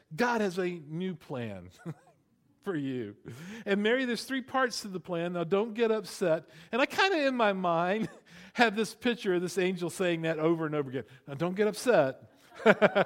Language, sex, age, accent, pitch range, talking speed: English, male, 50-69, American, 170-230 Hz, 195 wpm